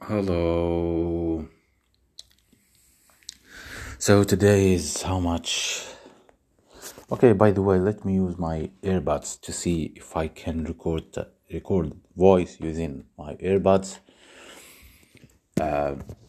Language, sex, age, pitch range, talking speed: English, male, 30-49, 80-95 Hz, 100 wpm